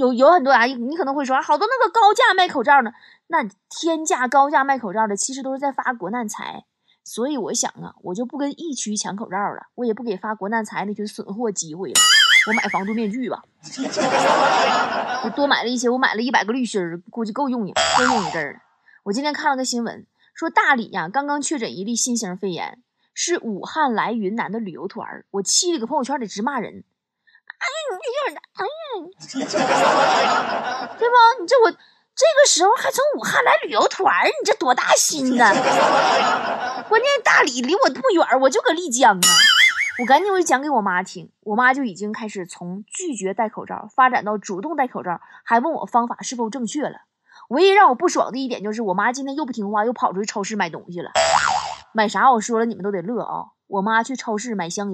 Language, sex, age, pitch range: Chinese, female, 20-39, 210-295 Hz